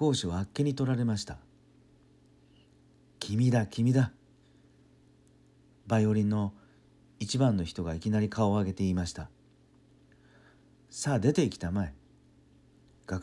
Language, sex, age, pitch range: Japanese, male, 50-69, 75-110 Hz